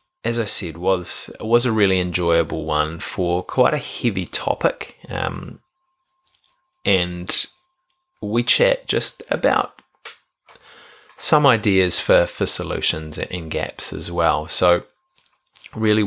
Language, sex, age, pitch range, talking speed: English, male, 20-39, 85-120 Hz, 115 wpm